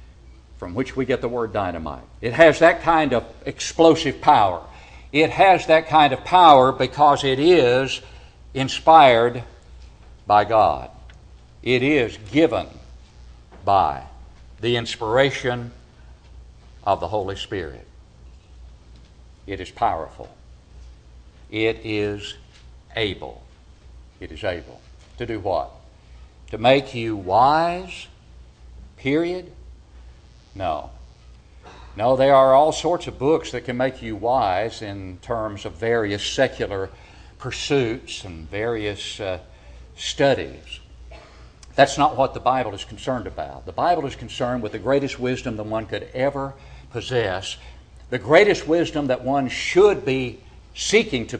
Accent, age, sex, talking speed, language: American, 60-79, male, 125 wpm, English